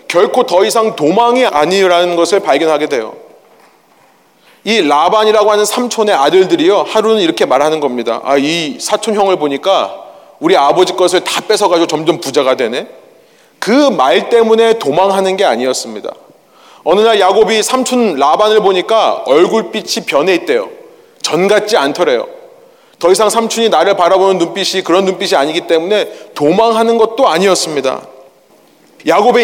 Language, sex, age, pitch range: Korean, male, 30-49, 170-250 Hz